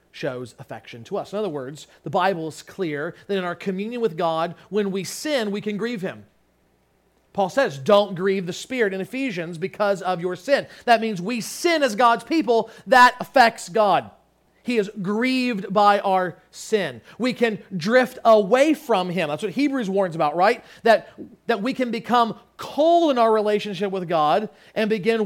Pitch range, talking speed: 200-265 Hz, 185 wpm